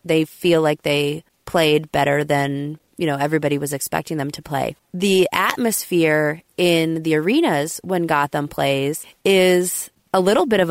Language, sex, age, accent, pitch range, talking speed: English, female, 20-39, American, 150-190 Hz, 155 wpm